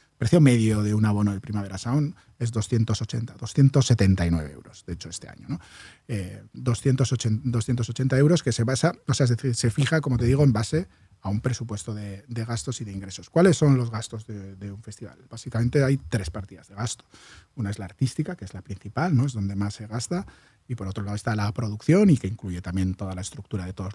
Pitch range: 105-130 Hz